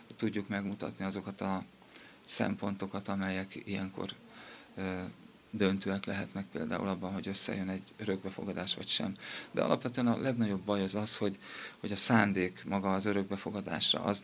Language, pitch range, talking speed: Hungarian, 100-115 Hz, 135 wpm